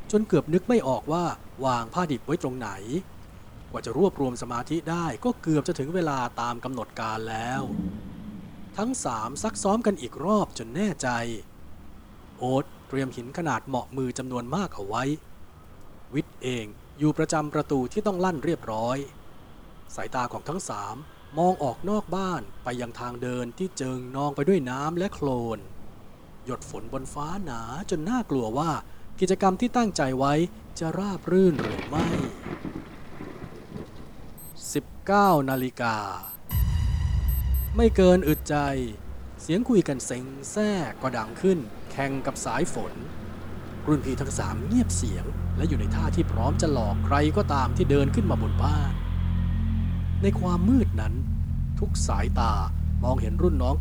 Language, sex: Thai, male